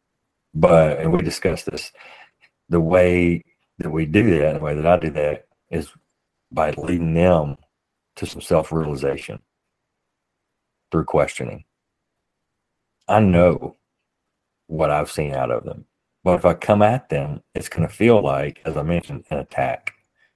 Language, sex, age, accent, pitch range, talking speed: English, male, 40-59, American, 75-90 Hz, 145 wpm